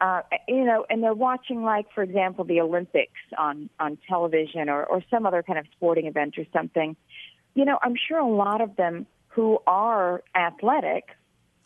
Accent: American